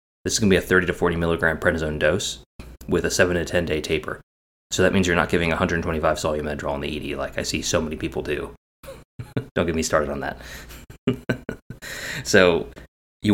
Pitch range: 70-90 Hz